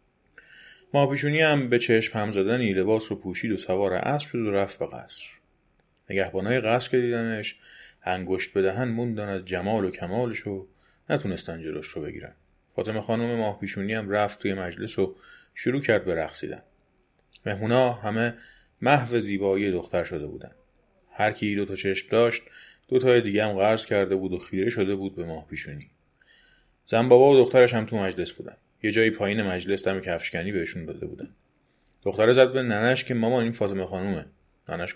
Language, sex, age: Persian, male, 30-49